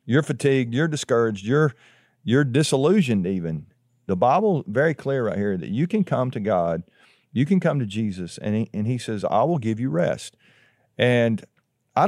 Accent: American